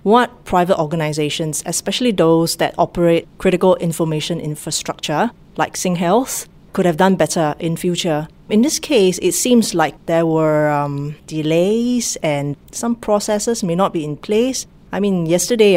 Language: English